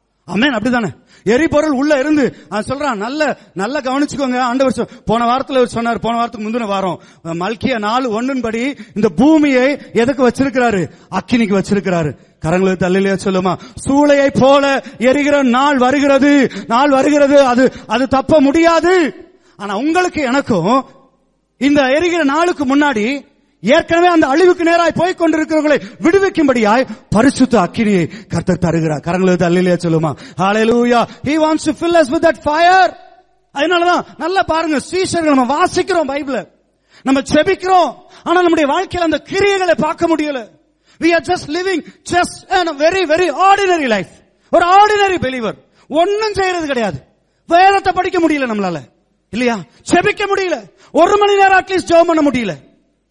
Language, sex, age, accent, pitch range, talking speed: English, male, 30-49, Indian, 225-335 Hz, 95 wpm